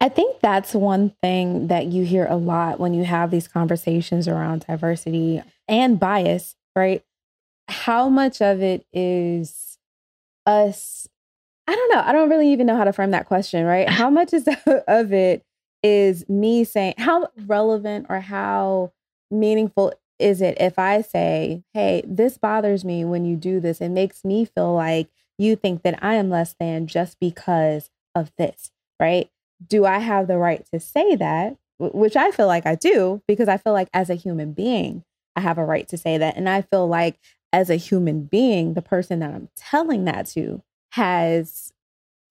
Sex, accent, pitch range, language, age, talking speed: female, American, 165-205 Hz, English, 20-39, 185 wpm